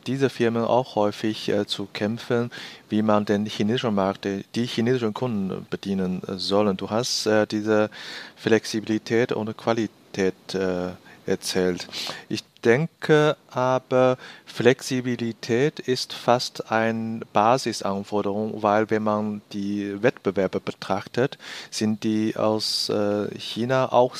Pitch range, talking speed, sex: 100-120 Hz, 115 wpm, male